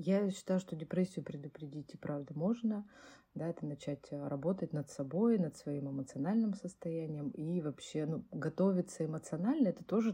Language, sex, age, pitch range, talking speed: Russian, female, 20-39, 150-180 Hz, 150 wpm